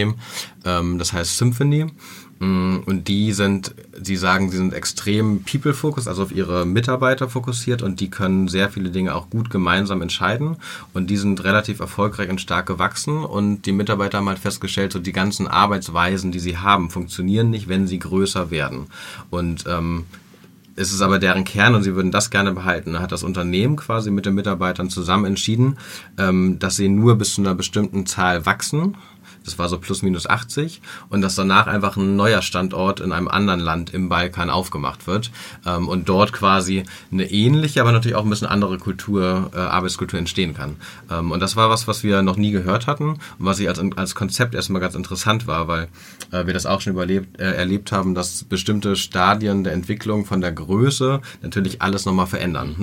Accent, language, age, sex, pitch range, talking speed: German, German, 30-49, male, 90-105 Hz, 190 wpm